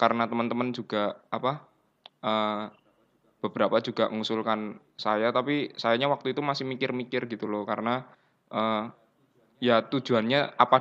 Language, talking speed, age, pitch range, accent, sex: Indonesian, 120 wpm, 20-39, 110-125 Hz, native, male